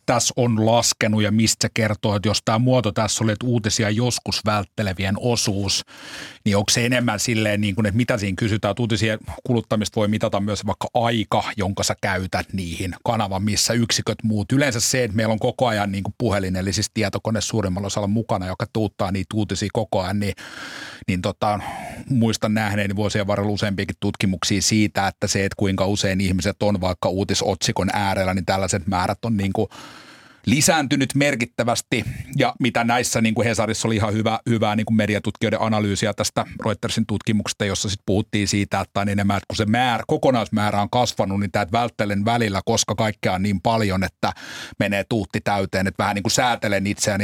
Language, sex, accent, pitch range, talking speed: Finnish, male, native, 100-115 Hz, 180 wpm